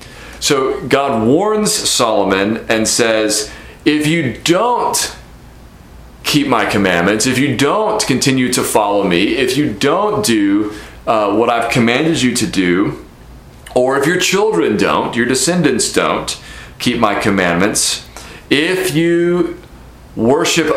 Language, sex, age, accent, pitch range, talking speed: English, male, 40-59, American, 110-145 Hz, 125 wpm